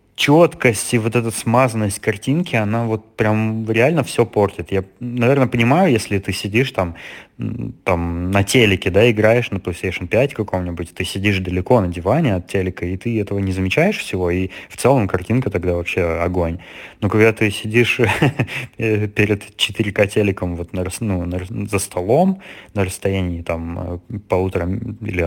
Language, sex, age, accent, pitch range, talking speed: Russian, male, 20-39, native, 95-120 Hz, 145 wpm